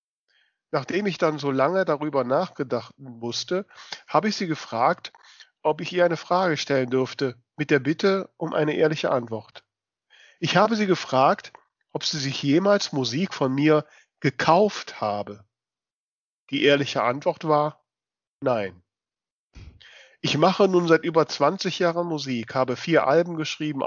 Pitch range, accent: 130-165 Hz, German